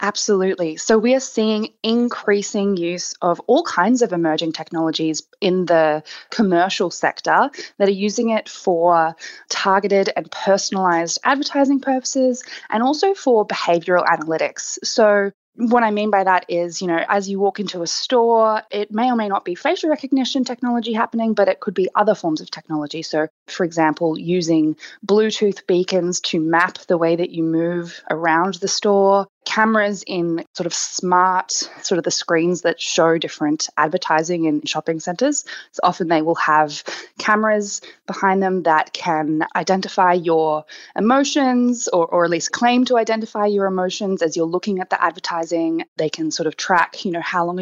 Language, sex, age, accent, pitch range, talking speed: English, female, 20-39, Australian, 170-220 Hz, 170 wpm